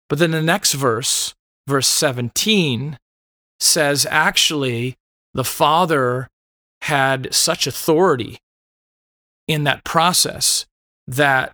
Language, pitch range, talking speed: English, 120-155 Hz, 95 wpm